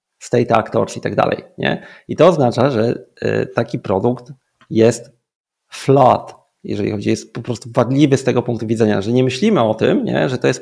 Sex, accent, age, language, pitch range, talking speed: male, native, 30-49, Polish, 120-140 Hz, 175 wpm